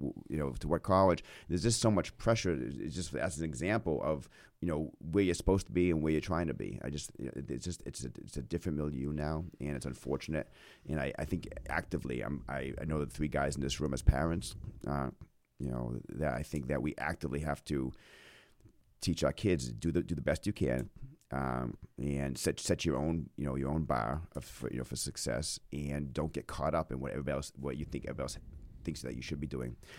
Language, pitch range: English, 70-90 Hz